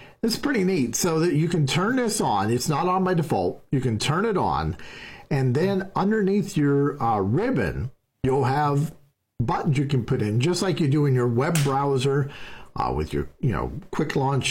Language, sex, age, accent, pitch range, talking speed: English, male, 50-69, American, 120-150 Hz, 200 wpm